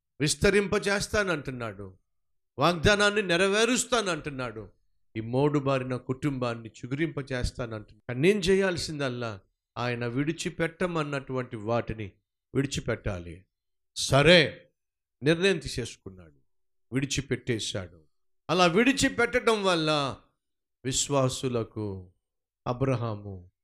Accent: native